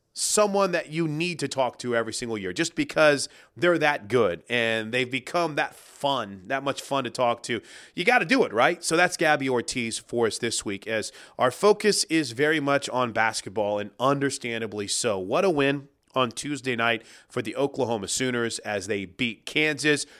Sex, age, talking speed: male, 30-49, 195 wpm